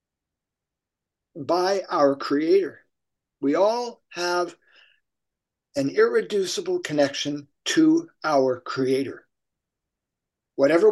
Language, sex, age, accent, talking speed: English, male, 50-69, American, 70 wpm